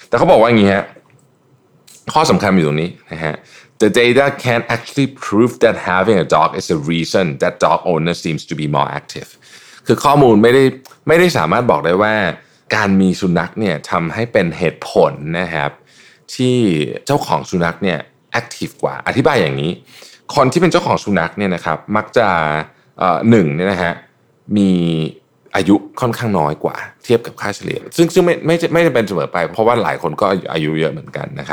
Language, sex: Thai, male